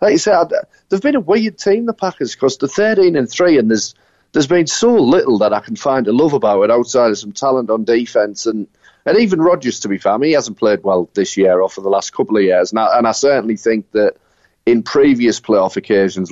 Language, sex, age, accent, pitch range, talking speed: English, male, 30-49, British, 100-115 Hz, 255 wpm